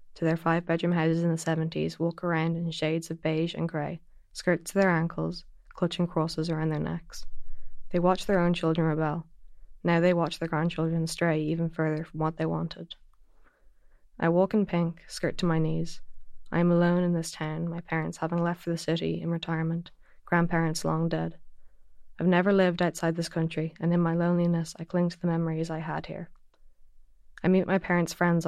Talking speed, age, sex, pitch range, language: 190 wpm, 20-39, female, 160-175 Hz, English